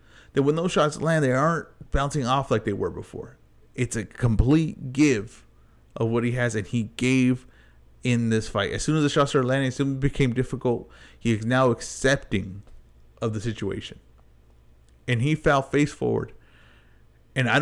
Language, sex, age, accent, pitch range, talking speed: English, male, 30-49, American, 105-140 Hz, 180 wpm